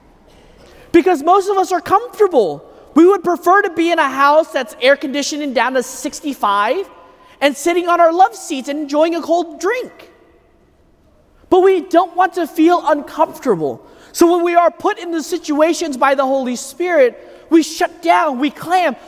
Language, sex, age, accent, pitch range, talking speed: English, male, 30-49, American, 245-335 Hz, 175 wpm